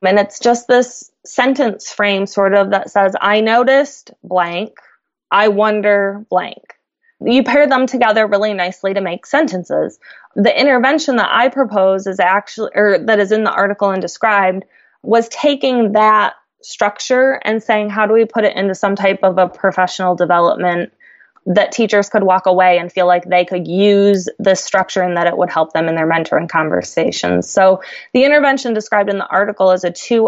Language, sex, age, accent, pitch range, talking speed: English, female, 20-39, American, 185-225 Hz, 180 wpm